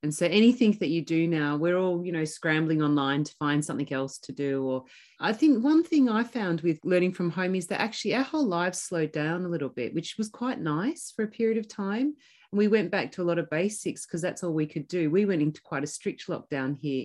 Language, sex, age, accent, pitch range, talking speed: English, female, 30-49, Australian, 160-215 Hz, 255 wpm